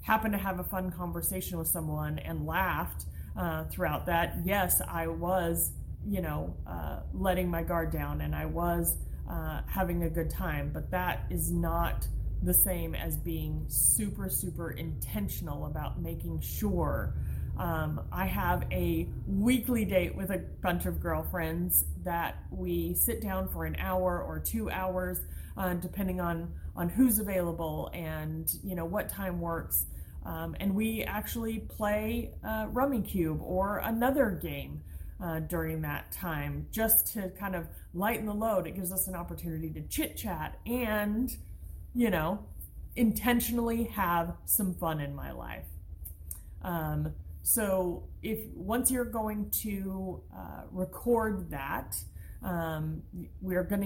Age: 30-49